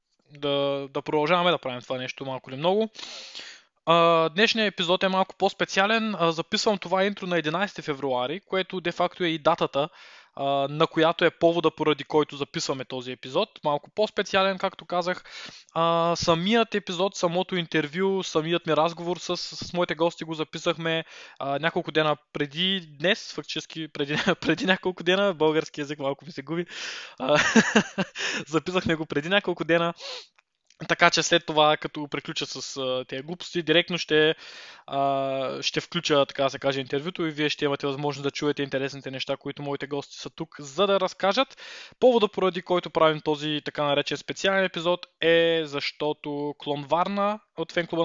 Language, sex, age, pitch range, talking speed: Bulgarian, male, 20-39, 145-180 Hz, 160 wpm